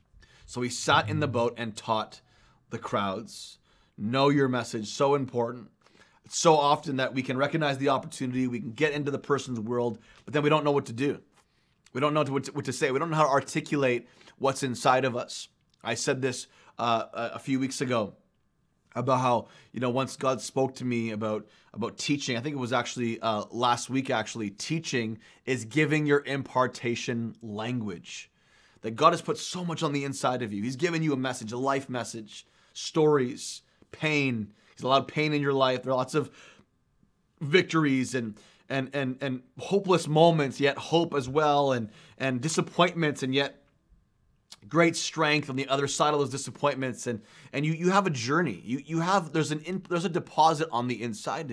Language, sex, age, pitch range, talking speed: English, male, 30-49, 125-150 Hz, 200 wpm